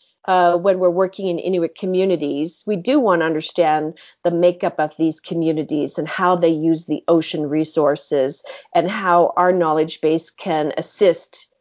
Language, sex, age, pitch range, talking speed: English, female, 40-59, 170-205 Hz, 160 wpm